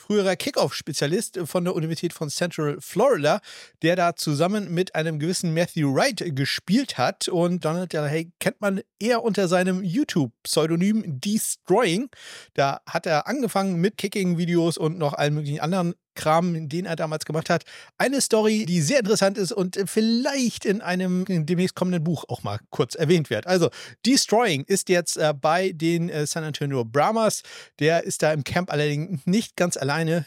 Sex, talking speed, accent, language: male, 165 wpm, German, German